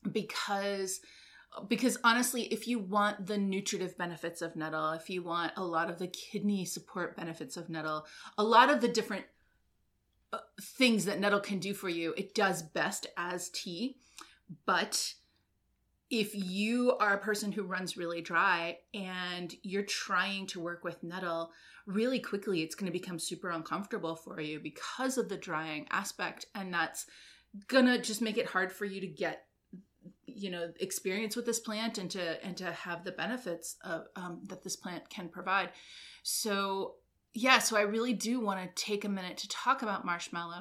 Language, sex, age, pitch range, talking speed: English, female, 30-49, 175-225 Hz, 175 wpm